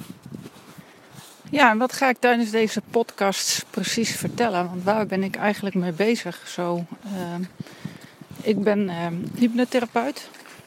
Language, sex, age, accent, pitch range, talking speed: Dutch, female, 40-59, Dutch, 185-225 Hz, 130 wpm